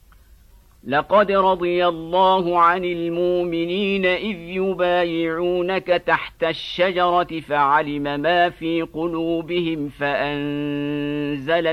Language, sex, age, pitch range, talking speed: Indonesian, male, 50-69, 150-180 Hz, 70 wpm